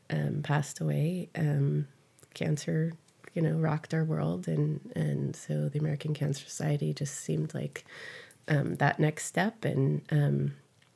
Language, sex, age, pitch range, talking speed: English, female, 20-39, 140-160 Hz, 140 wpm